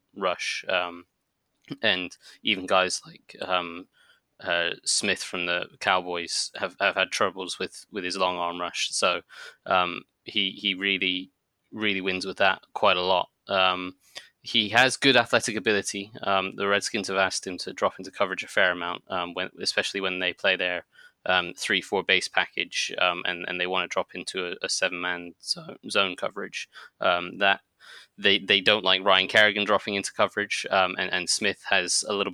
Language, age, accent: English, 20-39, British